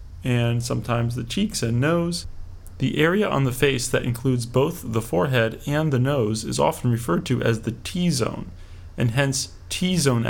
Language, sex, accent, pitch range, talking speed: English, male, American, 110-140 Hz, 170 wpm